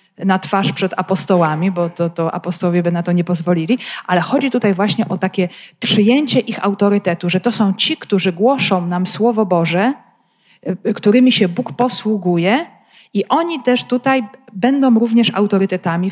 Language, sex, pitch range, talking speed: Polish, female, 180-235 Hz, 155 wpm